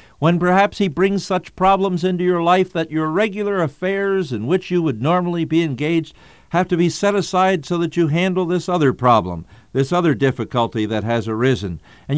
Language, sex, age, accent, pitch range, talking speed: English, male, 60-79, American, 125-185 Hz, 190 wpm